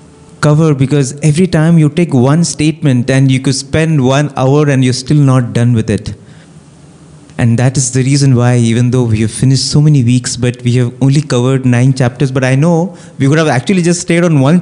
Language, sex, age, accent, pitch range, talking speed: English, male, 30-49, Indian, 120-150 Hz, 220 wpm